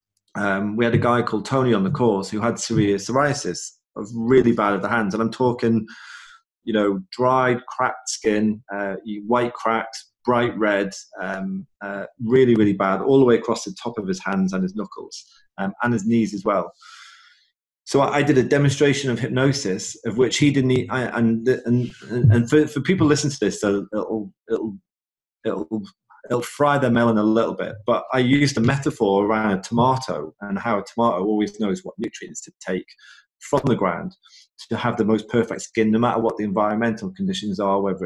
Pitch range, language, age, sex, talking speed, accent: 105-130 Hz, English, 30-49, male, 195 wpm, British